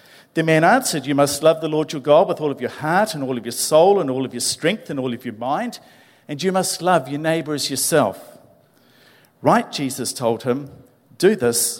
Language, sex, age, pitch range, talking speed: English, male, 50-69, 125-175 Hz, 225 wpm